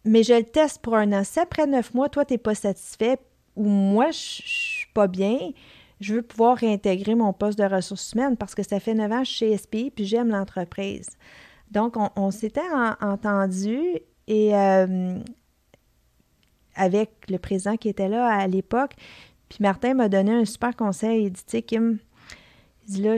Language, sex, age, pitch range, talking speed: French, female, 40-59, 190-225 Hz, 190 wpm